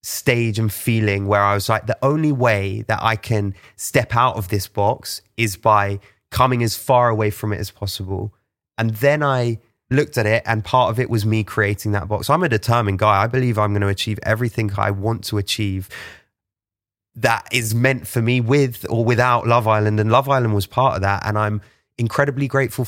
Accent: British